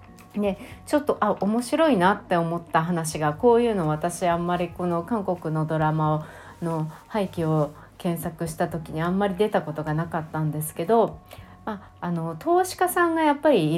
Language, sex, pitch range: Japanese, female, 160-220 Hz